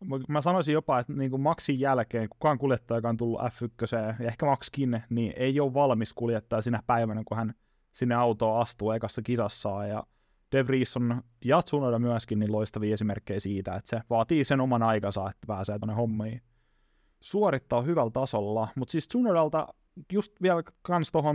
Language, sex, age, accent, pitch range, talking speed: Finnish, male, 20-39, native, 115-145 Hz, 170 wpm